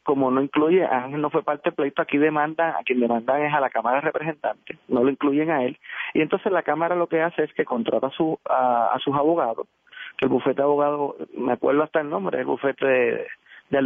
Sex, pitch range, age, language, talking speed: male, 130-165 Hz, 30-49, Spanish, 235 wpm